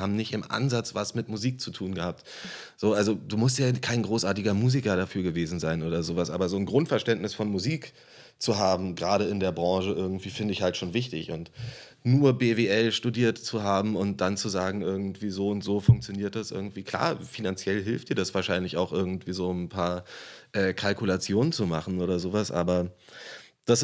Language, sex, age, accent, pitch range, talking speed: German, male, 30-49, German, 95-115 Hz, 195 wpm